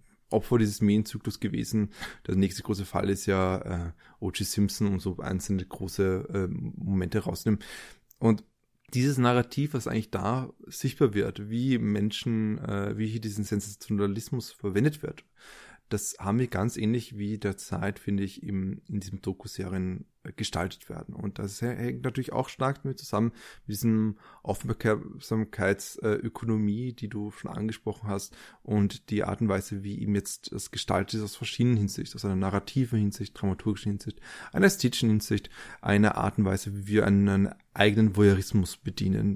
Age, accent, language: 20-39, German, German